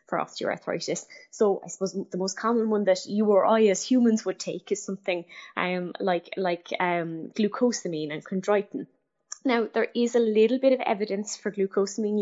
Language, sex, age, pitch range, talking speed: English, female, 20-39, 175-210 Hz, 175 wpm